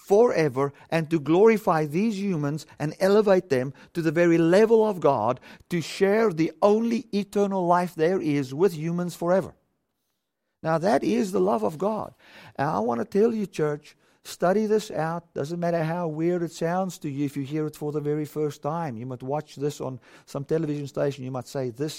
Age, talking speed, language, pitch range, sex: 50-69, 195 wpm, English, 130-180 Hz, male